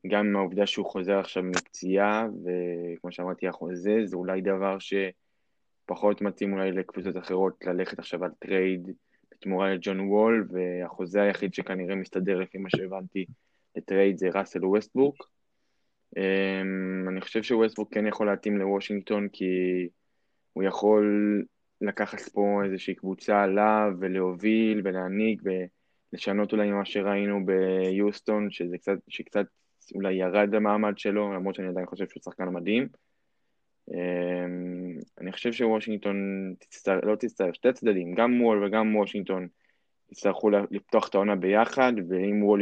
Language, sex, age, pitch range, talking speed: Hebrew, male, 20-39, 95-105 Hz, 125 wpm